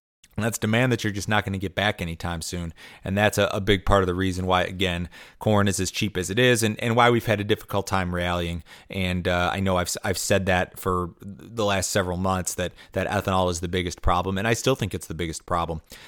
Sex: male